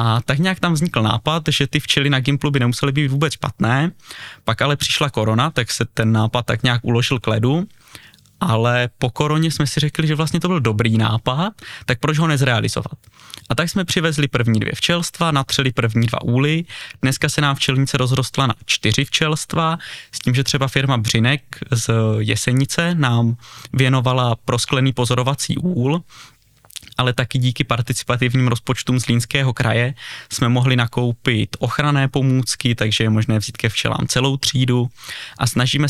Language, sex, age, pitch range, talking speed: Czech, male, 20-39, 120-145 Hz, 165 wpm